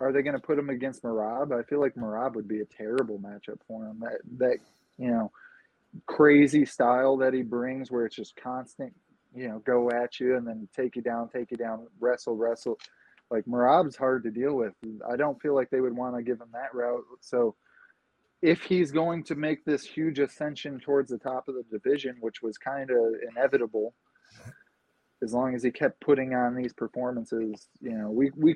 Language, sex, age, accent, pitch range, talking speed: English, male, 20-39, American, 115-140 Hz, 200 wpm